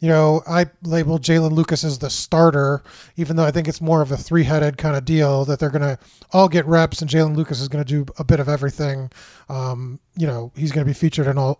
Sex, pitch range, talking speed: male, 150-175 Hz, 240 wpm